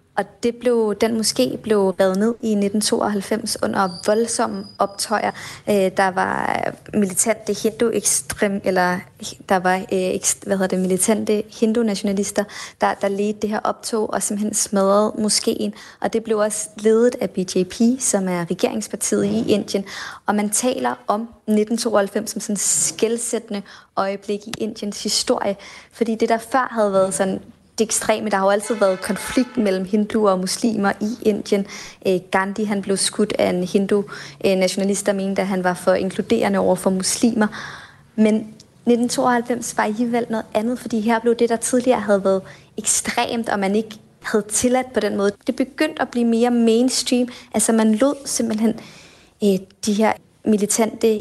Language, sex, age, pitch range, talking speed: Danish, female, 20-39, 200-230 Hz, 155 wpm